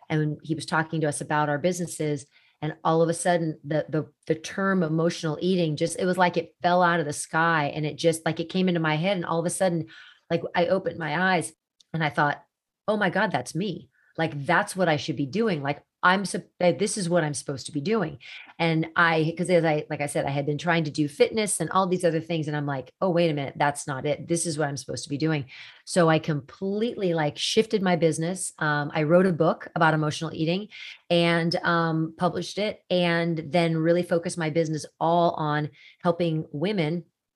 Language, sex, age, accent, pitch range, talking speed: English, female, 30-49, American, 150-175 Hz, 230 wpm